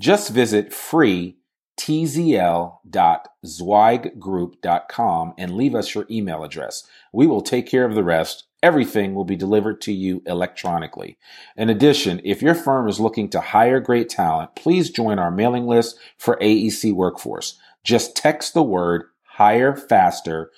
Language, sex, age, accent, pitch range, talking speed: English, male, 40-59, American, 95-120 Hz, 145 wpm